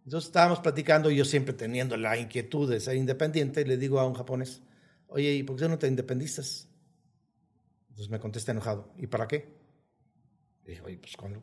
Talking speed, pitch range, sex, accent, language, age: 195 wpm, 120-150 Hz, male, Mexican, English, 50-69